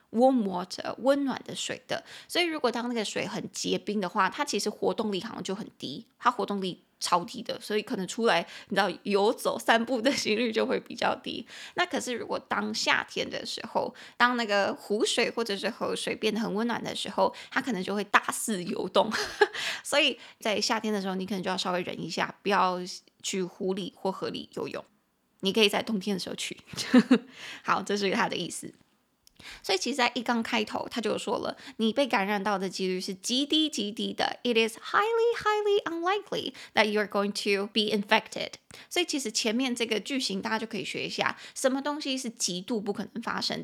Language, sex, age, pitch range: Chinese, female, 20-39, 205-255 Hz